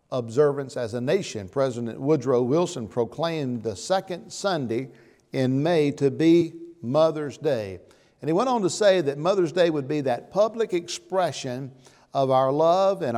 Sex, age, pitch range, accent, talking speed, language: male, 50-69, 125-160 Hz, American, 160 wpm, English